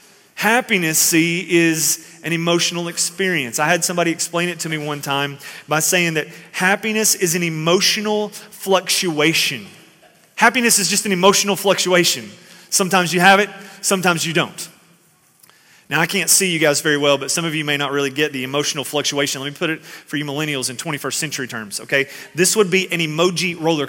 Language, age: English, 30-49